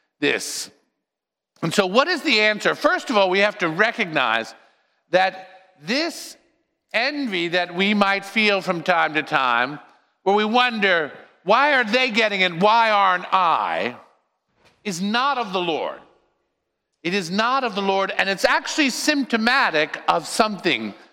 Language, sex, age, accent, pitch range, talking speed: English, male, 50-69, American, 180-245 Hz, 150 wpm